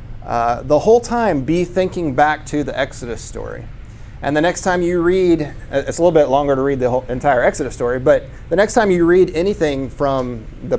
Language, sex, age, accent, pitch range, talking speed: English, male, 30-49, American, 120-150 Hz, 210 wpm